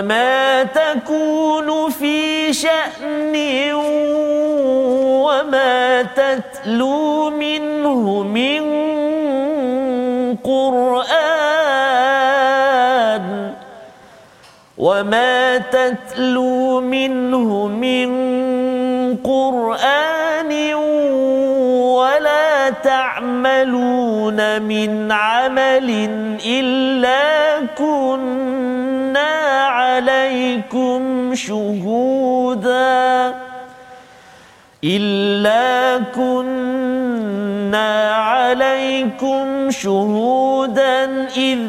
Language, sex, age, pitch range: Malayalam, male, 40-59, 245-270 Hz